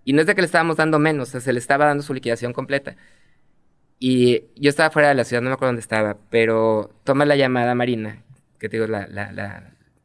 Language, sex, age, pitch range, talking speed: Spanish, male, 20-39, 125-155 Hz, 250 wpm